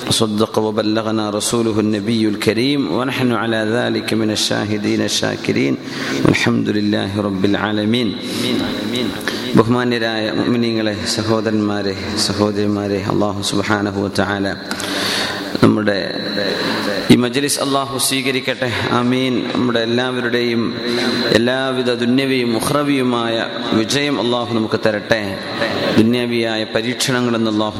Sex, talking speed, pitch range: male, 45 wpm, 105-130 Hz